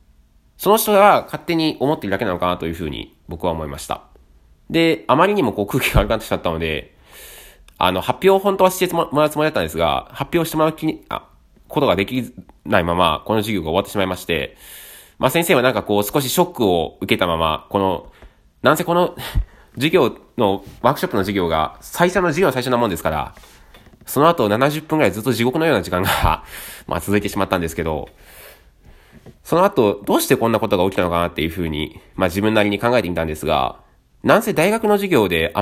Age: 20-39